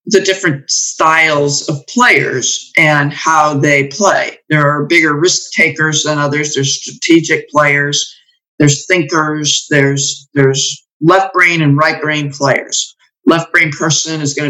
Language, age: English, 50-69